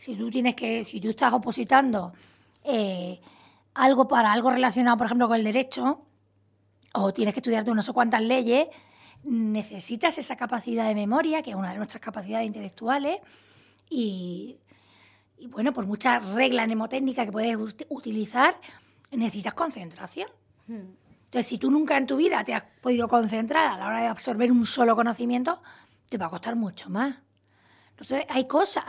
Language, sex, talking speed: Spanish, female, 160 wpm